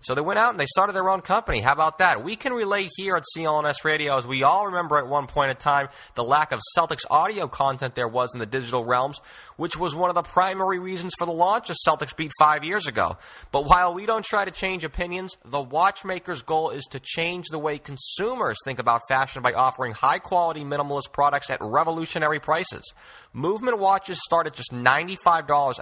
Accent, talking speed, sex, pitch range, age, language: American, 210 wpm, male, 140-185 Hz, 30-49, English